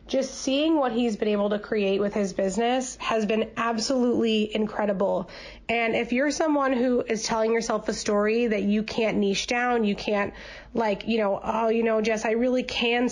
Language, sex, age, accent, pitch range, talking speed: English, female, 20-39, American, 205-250 Hz, 190 wpm